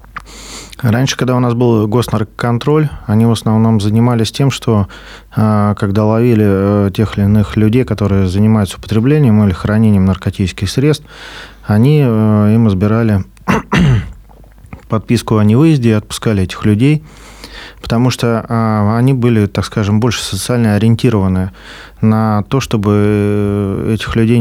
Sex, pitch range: male, 100-120 Hz